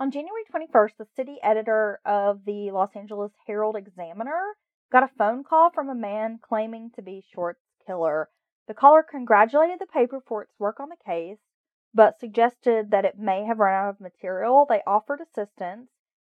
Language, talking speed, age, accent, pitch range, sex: English, 175 wpm, 30-49, American, 205-265 Hz, female